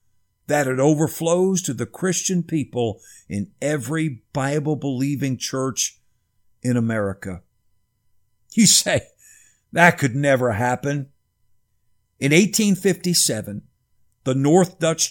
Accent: American